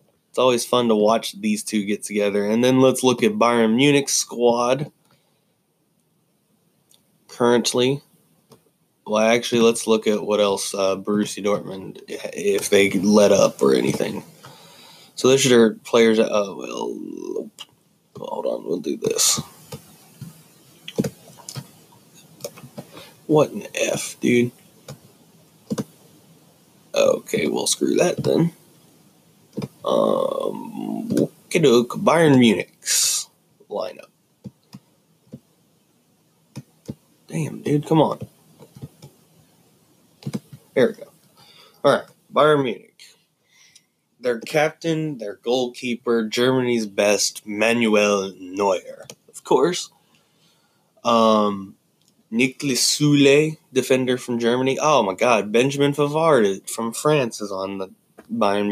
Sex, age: male, 20-39